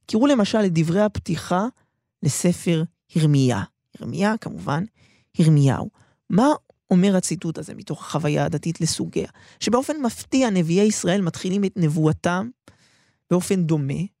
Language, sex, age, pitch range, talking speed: Hebrew, male, 20-39, 160-210 Hz, 115 wpm